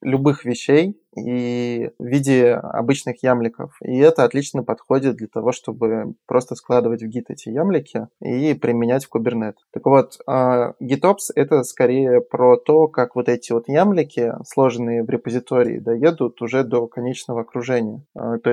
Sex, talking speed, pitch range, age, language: male, 145 wpm, 120-135 Hz, 20-39, Russian